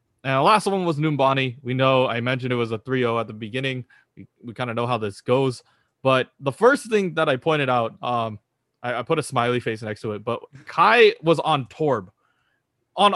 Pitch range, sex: 120-160 Hz, male